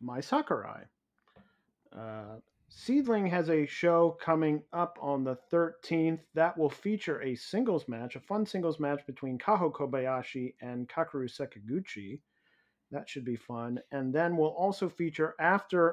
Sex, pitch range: male, 130-165 Hz